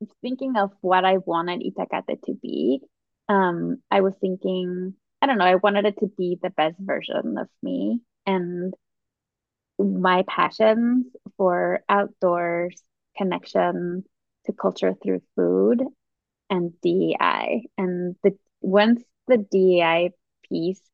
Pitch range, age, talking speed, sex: 175-215 Hz, 20-39, 125 wpm, female